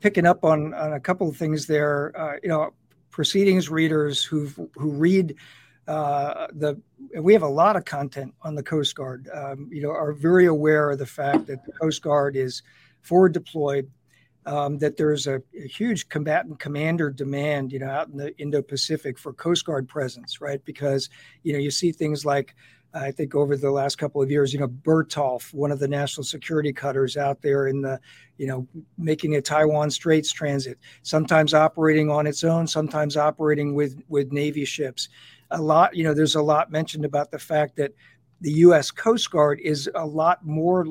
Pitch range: 140-160 Hz